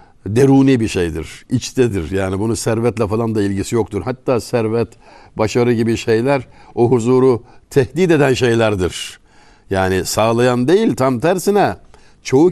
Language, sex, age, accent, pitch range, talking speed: Turkish, male, 60-79, native, 100-130 Hz, 130 wpm